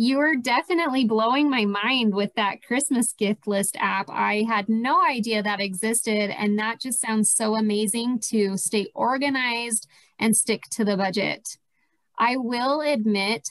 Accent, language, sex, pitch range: American, English, female, 205-235 Hz